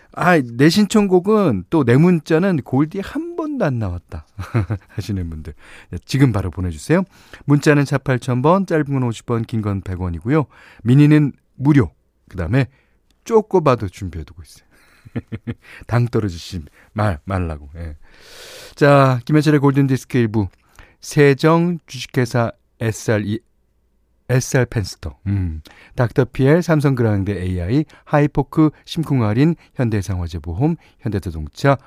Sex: male